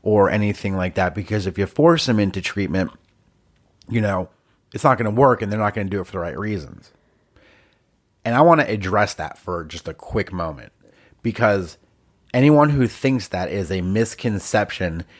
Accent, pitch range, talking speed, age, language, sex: American, 95-115 Hz, 190 wpm, 30-49, English, male